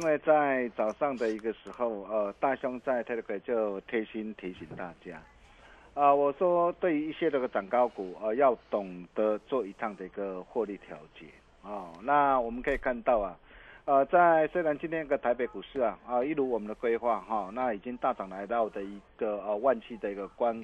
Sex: male